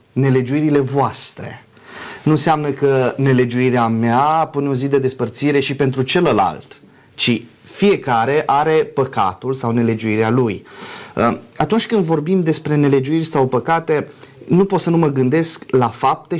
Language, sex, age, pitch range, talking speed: Romanian, male, 30-49, 110-155 Hz, 135 wpm